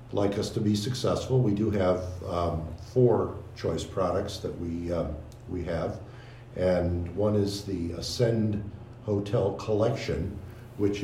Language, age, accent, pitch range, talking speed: English, 60-79, American, 95-120 Hz, 135 wpm